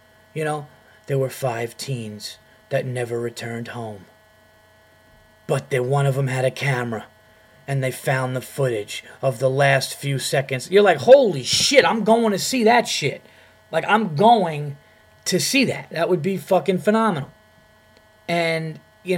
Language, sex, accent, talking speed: English, male, American, 160 wpm